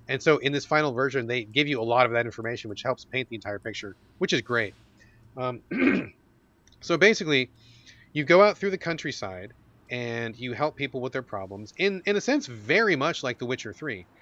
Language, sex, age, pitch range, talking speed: English, male, 30-49, 115-150 Hz, 205 wpm